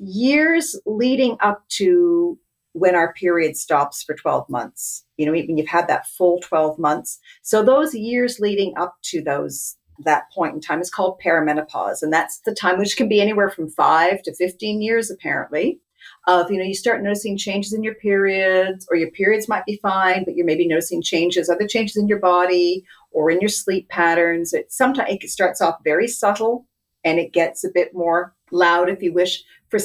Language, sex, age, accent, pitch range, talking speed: English, female, 50-69, American, 170-220 Hz, 195 wpm